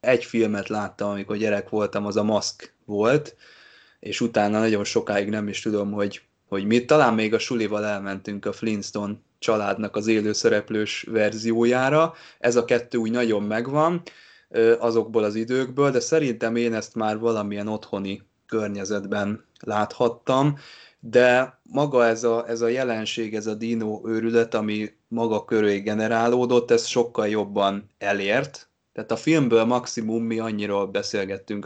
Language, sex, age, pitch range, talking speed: Hungarian, male, 20-39, 105-120 Hz, 140 wpm